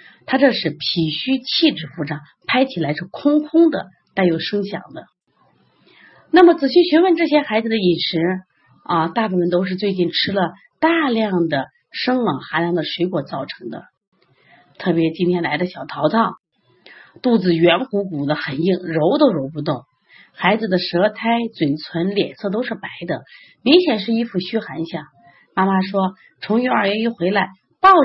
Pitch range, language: 170-235 Hz, Chinese